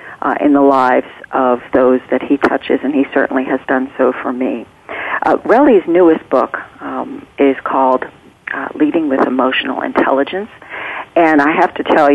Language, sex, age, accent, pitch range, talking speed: English, female, 50-69, American, 135-180 Hz, 170 wpm